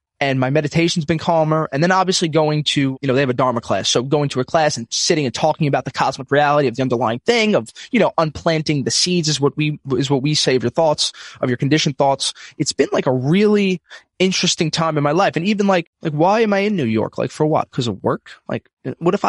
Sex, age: male, 20-39